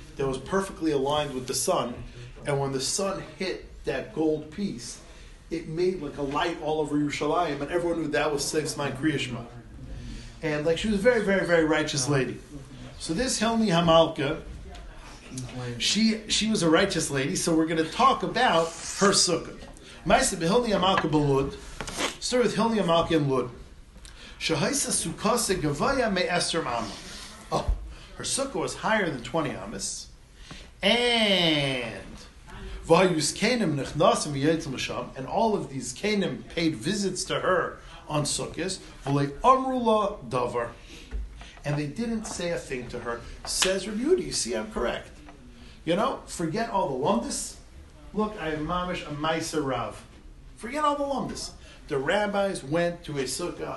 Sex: male